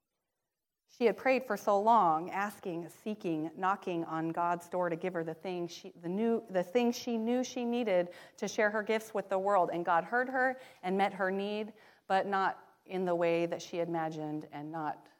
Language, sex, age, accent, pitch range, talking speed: English, female, 30-49, American, 170-220 Hz, 200 wpm